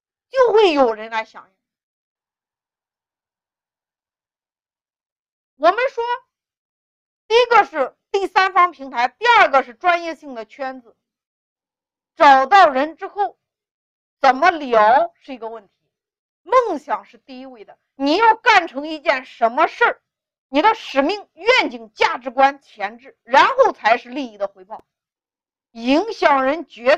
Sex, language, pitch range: female, Chinese, 265-395 Hz